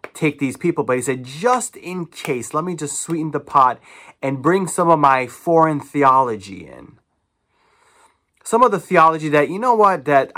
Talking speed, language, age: 185 wpm, English, 30-49